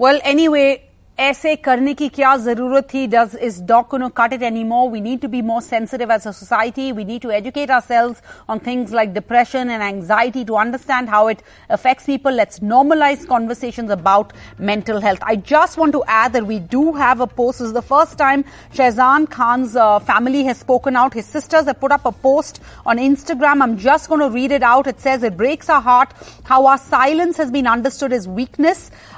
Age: 40-59